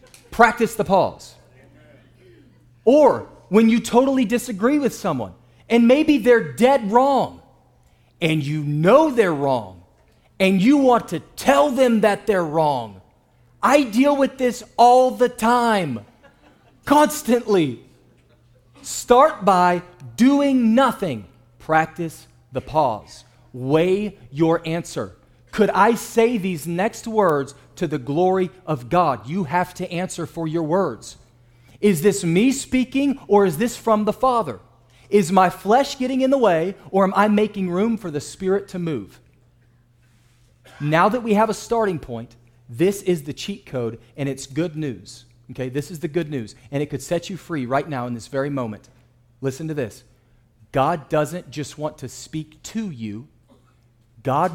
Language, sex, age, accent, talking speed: English, male, 40-59, American, 150 wpm